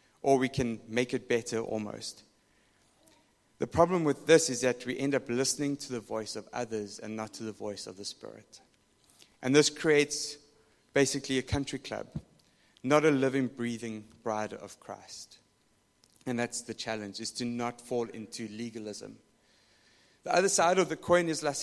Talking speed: 170 wpm